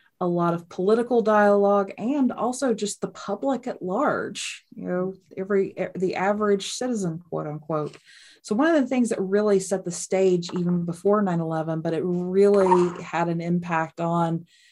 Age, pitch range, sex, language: 30-49, 160-195 Hz, female, English